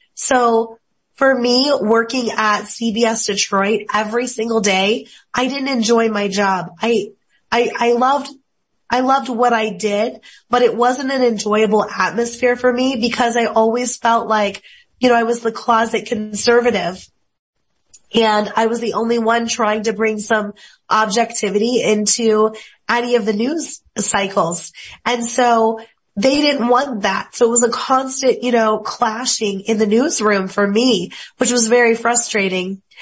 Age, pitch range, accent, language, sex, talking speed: 20-39, 215-245 Hz, American, English, female, 155 wpm